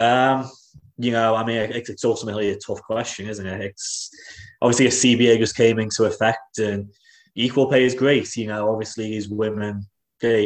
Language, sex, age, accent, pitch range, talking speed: English, male, 20-39, British, 100-115 Hz, 185 wpm